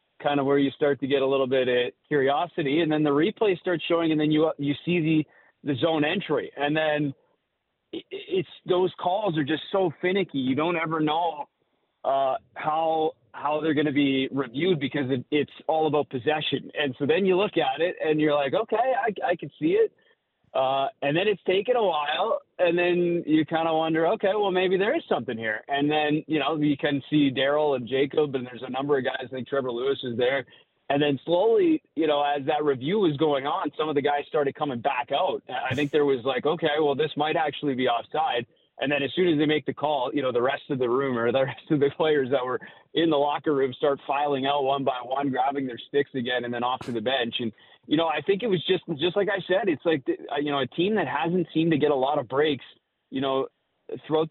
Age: 30-49